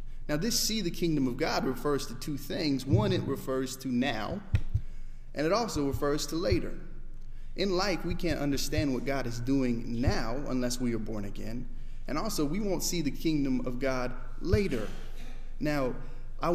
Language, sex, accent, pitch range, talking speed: English, male, American, 125-150 Hz, 180 wpm